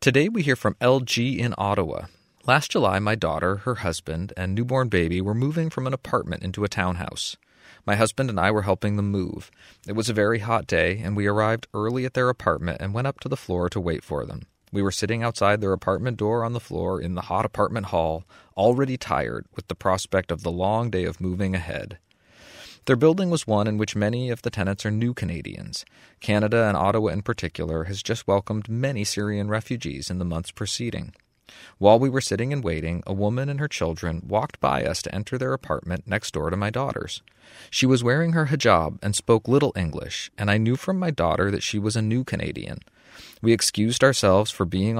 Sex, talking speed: male, 210 wpm